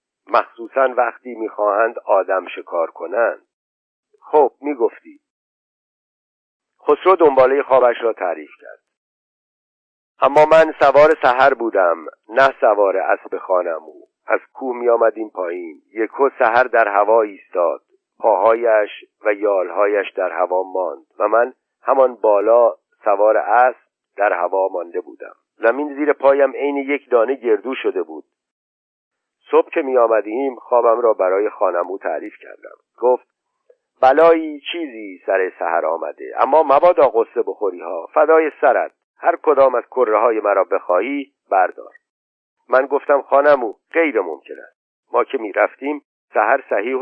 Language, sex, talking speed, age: Persian, male, 125 wpm, 50-69